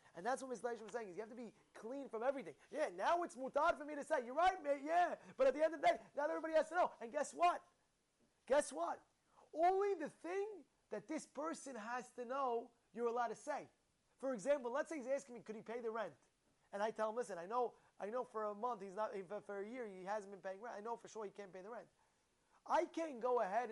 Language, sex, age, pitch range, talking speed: English, male, 20-39, 215-280 Hz, 265 wpm